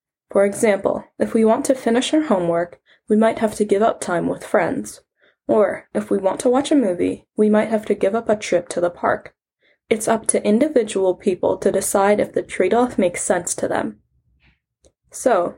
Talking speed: 200 wpm